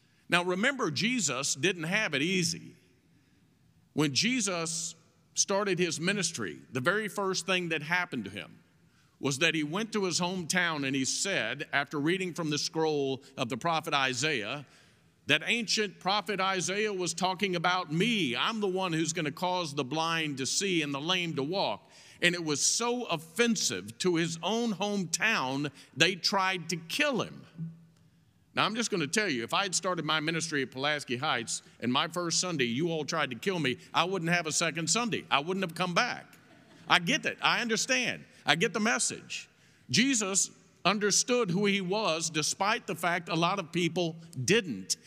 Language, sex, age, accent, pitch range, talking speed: English, male, 50-69, American, 160-200 Hz, 180 wpm